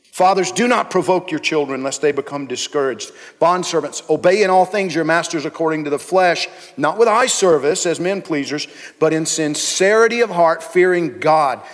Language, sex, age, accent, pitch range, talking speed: English, male, 50-69, American, 155-190 Hz, 185 wpm